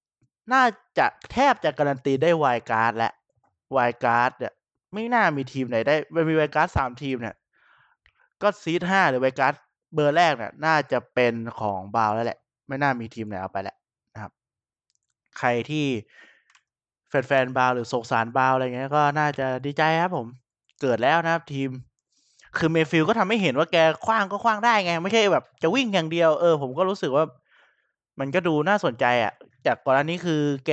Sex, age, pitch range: male, 20-39, 125-165 Hz